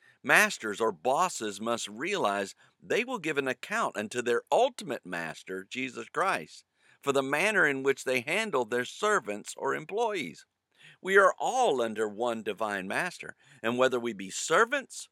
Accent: American